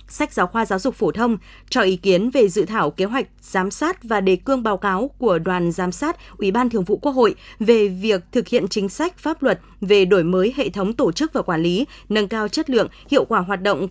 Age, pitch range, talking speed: 20-39, 190-255 Hz, 250 wpm